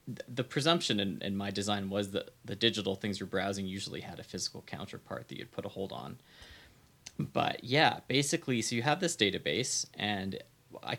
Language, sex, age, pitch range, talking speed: English, male, 20-39, 95-120 Hz, 185 wpm